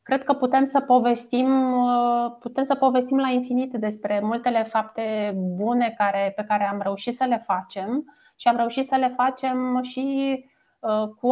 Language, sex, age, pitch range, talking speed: Romanian, female, 20-39, 220-260 Hz, 160 wpm